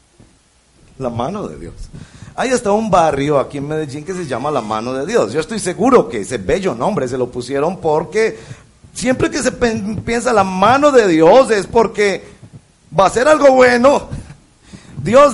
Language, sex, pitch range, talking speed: Spanish, male, 150-230 Hz, 175 wpm